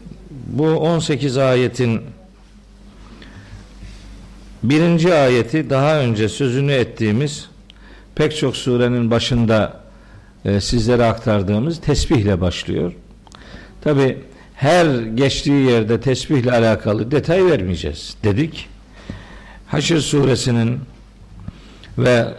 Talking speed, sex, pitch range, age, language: 80 wpm, male, 105-145 Hz, 50-69, Turkish